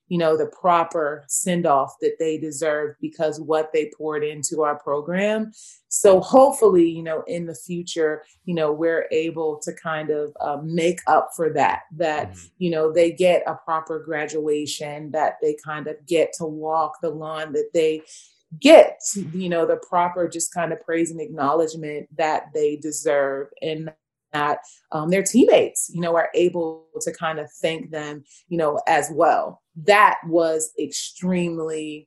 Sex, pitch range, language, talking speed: female, 155-175 Hz, English, 165 wpm